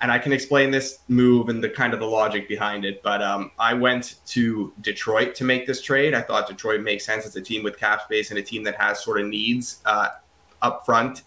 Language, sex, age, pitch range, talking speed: English, male, 20-39, 105-130 Hz, 245 wpm